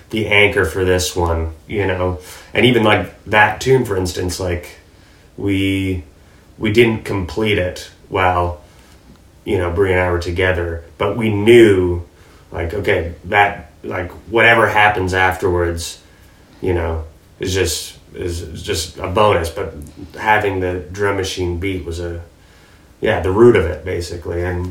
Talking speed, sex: 150 wpm, male